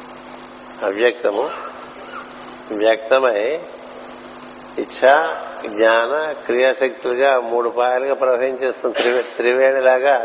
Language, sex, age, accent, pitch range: Telugu, male, 60-79, native, 115-135 Hz